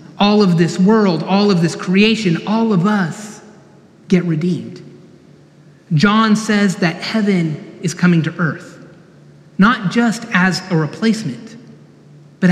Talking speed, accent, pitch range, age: 130 wpm, American, 170-200 Hz, 30-49